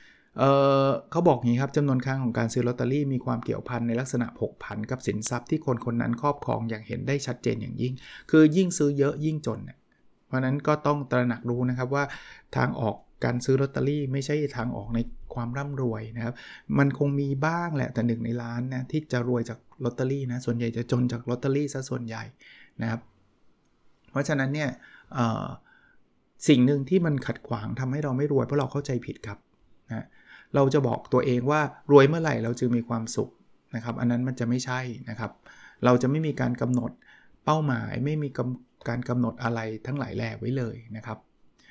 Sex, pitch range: male, 120-140 Hz